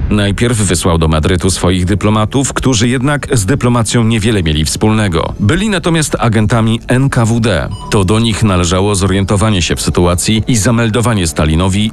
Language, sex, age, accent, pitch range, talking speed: Polish, male, 40-59, native, 100-130 Hz, 140 wpm